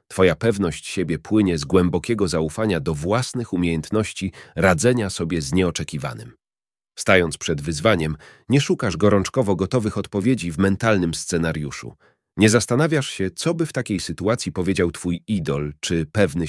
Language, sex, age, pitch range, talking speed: Polish, male, 40-59, 85-115 Hz, 140 wpm